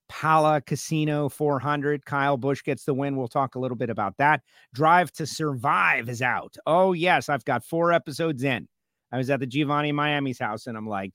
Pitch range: 135-190 Hz